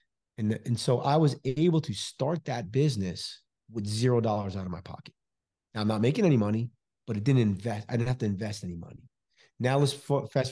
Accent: American